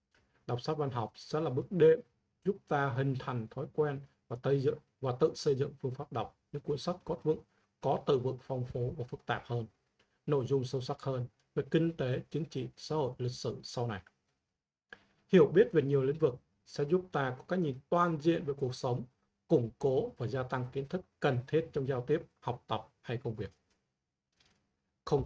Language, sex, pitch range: Vietnamese, male, 125-160 Hz